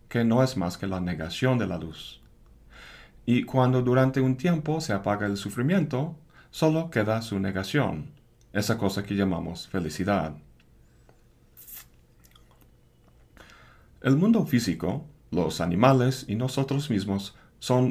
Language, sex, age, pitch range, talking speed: Spanish, male, 40-59, 95-130 Hz, 125 wpm